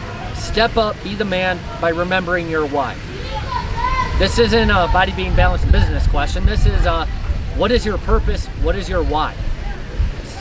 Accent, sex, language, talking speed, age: American, male, English, 165 wpm, 30-49